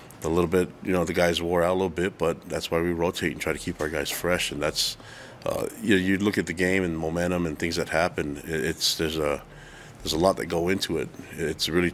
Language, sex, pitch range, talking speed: English, male, 80-90 Hz, 260 wpm